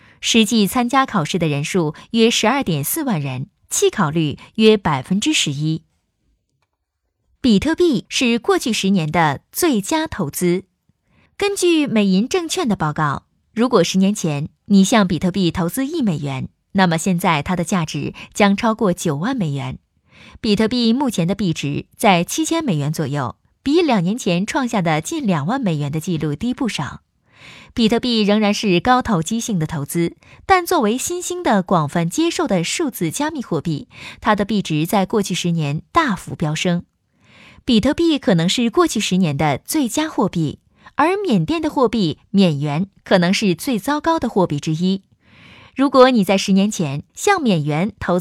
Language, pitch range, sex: Chinese, 170-250 Hz, female